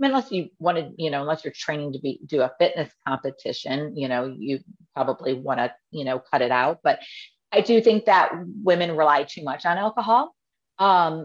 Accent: American